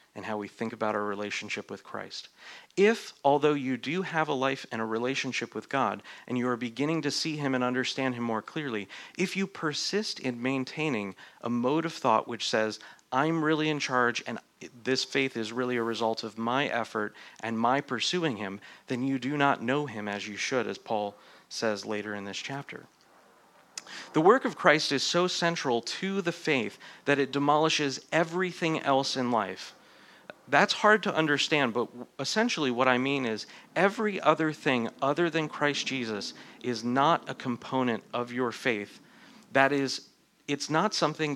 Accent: American